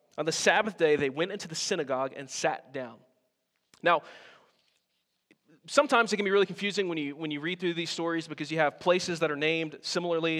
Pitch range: 150-185 Hz